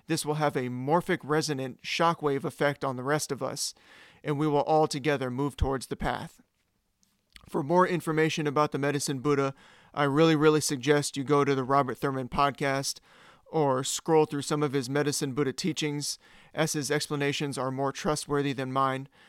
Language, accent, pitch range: English, American, 140-155 Hz